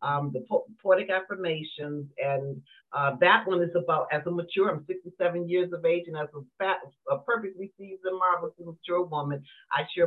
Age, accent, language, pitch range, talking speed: 40-59, American, English, 145-185 Hz, 185 wpm